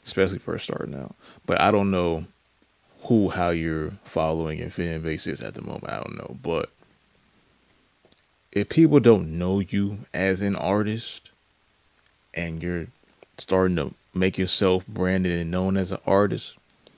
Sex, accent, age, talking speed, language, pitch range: male, American, 20-39, 155 wpm, English, 85-100 Hz